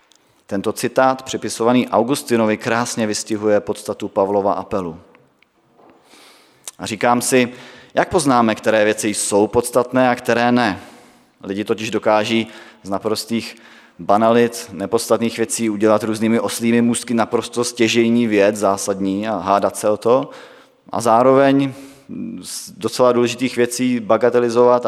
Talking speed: 120 wpm